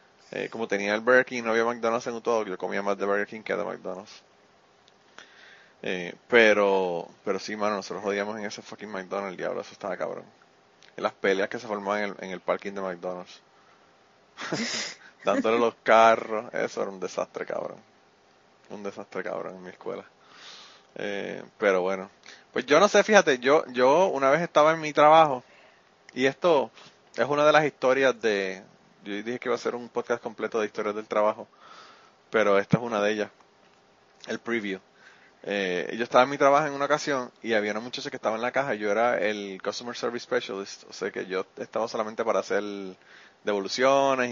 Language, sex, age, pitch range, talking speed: Spanish, male, 30-49, 100-130 Hz, 190 wpm